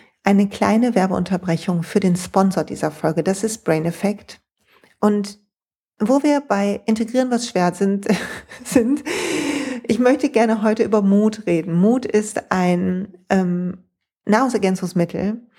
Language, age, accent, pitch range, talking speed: German, 40-59, German, 180-220 Hz, 125 wpm